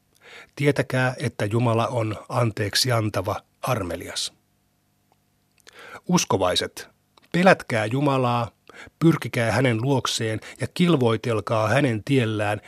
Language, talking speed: Finnish, 80 wpm